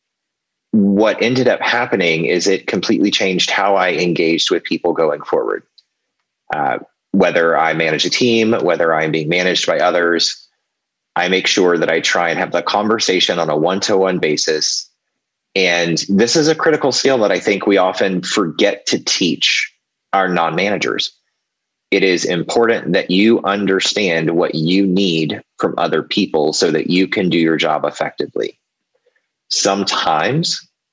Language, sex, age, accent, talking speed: English, male, 30-49, American, 150 wpm